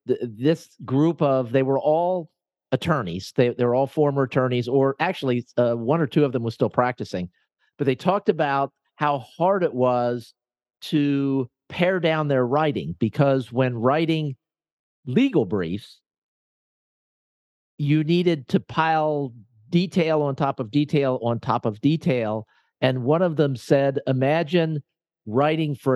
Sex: male